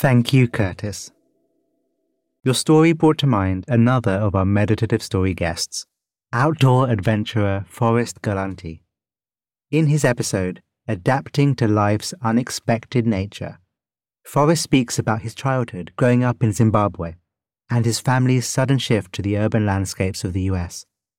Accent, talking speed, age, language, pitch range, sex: British, 135 wpm, 30-49, English, 105-130 Hz, male